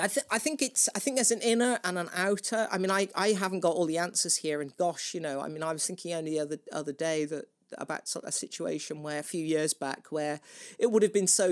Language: English